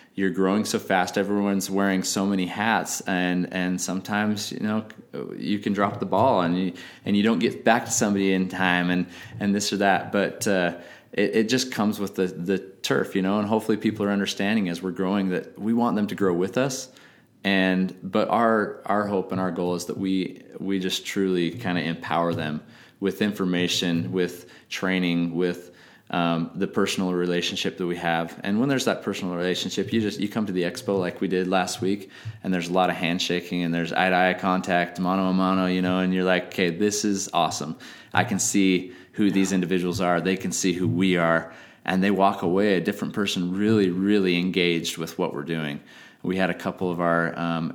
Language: English